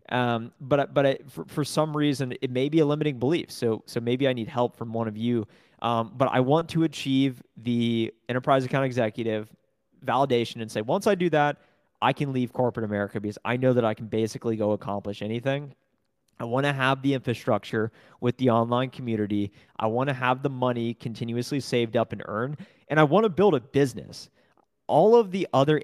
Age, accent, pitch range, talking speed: 30-49, American, 115-145 Hz, 200 wpm